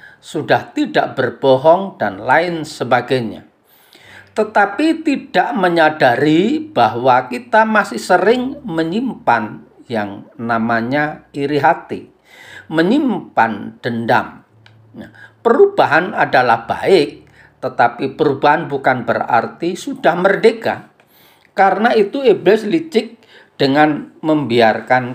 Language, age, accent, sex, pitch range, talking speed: Indonesian, 50-69, native, male, 120-195 Hz, 85 wpm